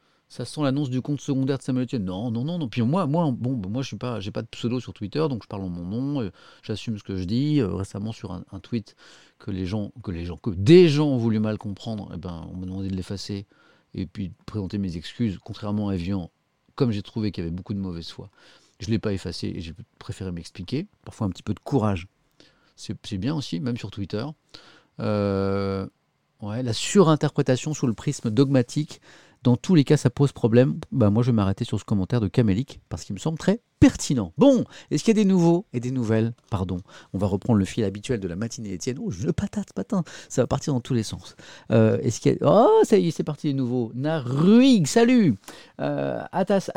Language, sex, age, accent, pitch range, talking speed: French, male, 40-59, French, 105-155 Hz, 230 wpm